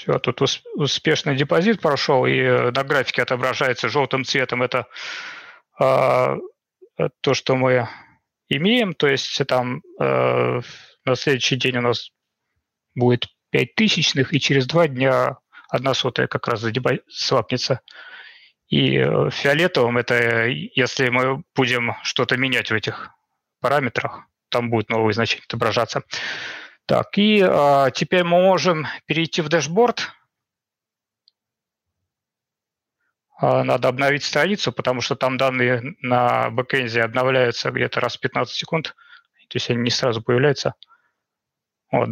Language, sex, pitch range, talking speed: Russian, male, 120-160 Hz, 120 wpm